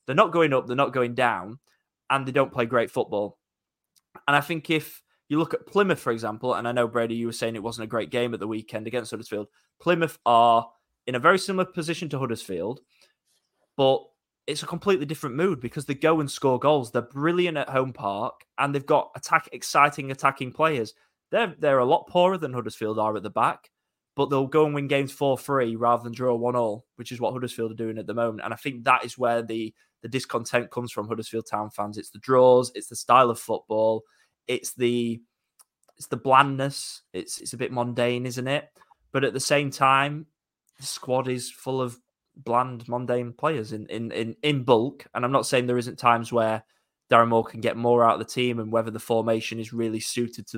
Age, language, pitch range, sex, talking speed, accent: 20-39, English, 115-140 Hz, male, 215 wpm, British